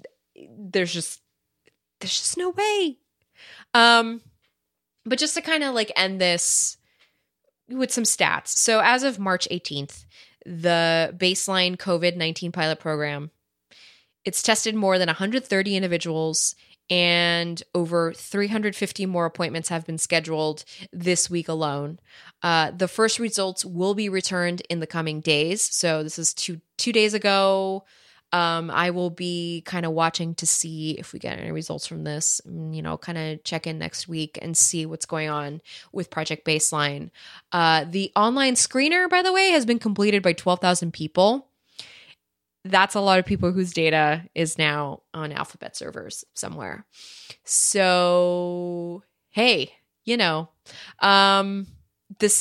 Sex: female